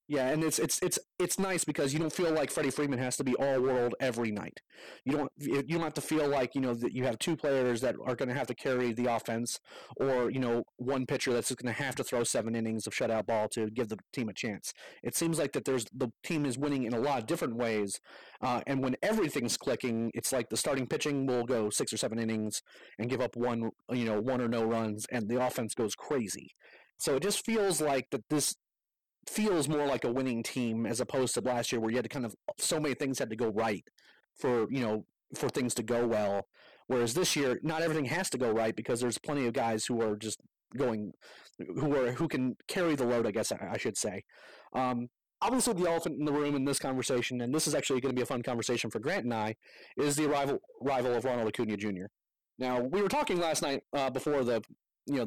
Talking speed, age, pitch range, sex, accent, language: 245 wpm, 30-49, 120-145 Hz, male, American, English